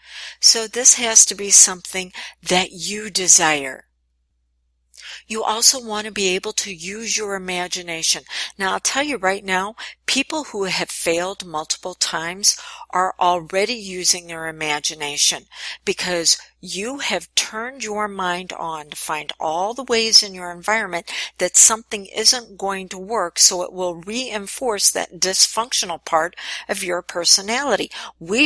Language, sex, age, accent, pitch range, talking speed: English, female, 50-69, American, 175-215 Hz, 145 wpm